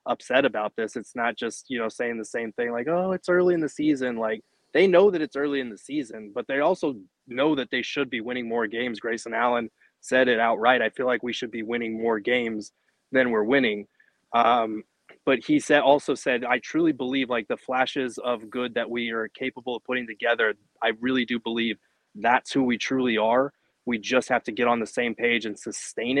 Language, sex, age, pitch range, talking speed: English, male, 20-39, 115-130 Hz, 220 wpm